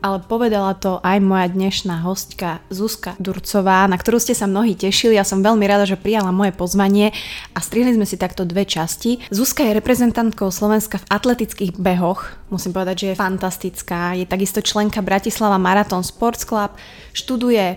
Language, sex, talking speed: Slovak, female, 170 wpm